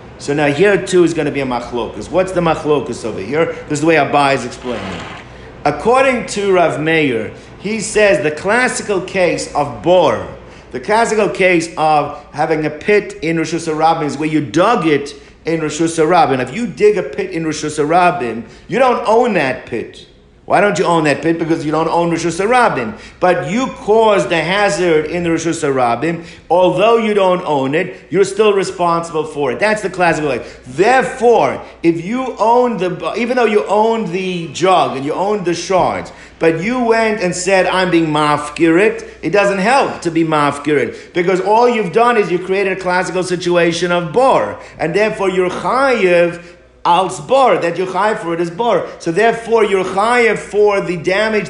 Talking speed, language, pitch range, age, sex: 190 wpm, English, 160-205 Hz, 50-69, male